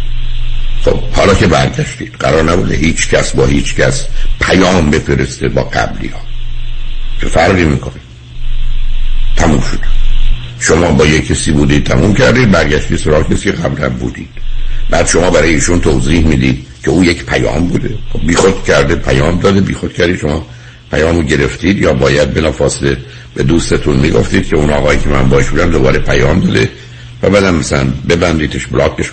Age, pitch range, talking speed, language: 60-79, 65-85 Hz, 150 wpm, Persian